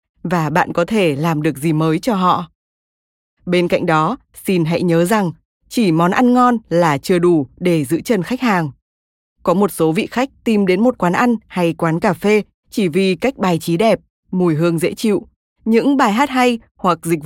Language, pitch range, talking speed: Vietnamese, 165-210 Hz, 205 wpm